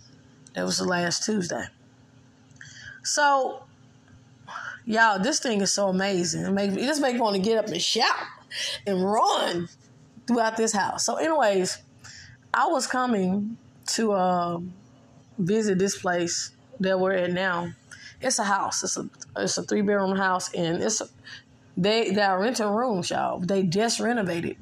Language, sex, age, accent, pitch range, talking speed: English, female, 20-39, American, 165-210 Hz, 155 wpm